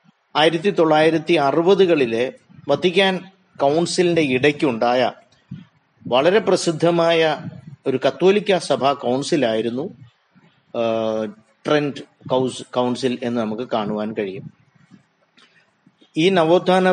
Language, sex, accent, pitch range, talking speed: Malayalam, male, native, 130-175 Hz, 75 wpm